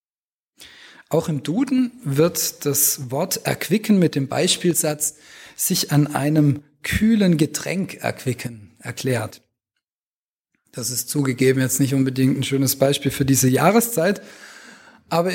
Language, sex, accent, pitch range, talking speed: German, male, German, 135-180 Hz, 115 wpm